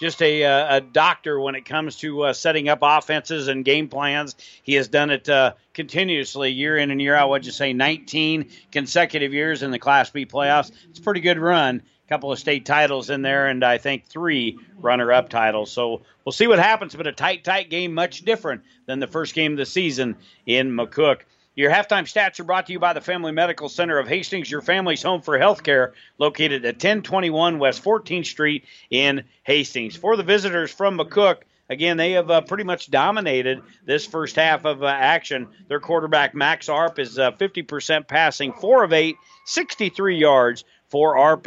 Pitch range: 135-170 Hz